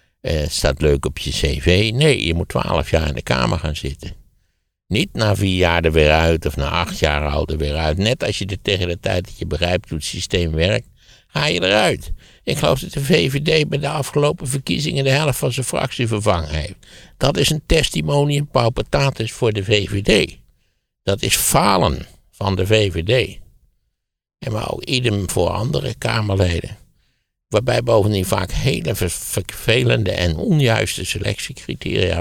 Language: Dutch